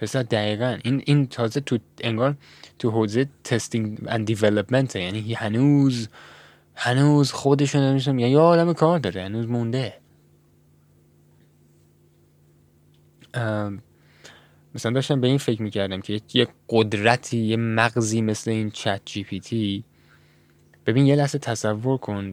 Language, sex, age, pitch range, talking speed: Persian, male, 10-29, 105-125 Hz, 120 wpm